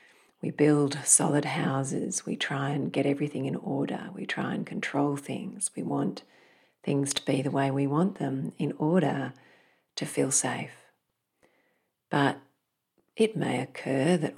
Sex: female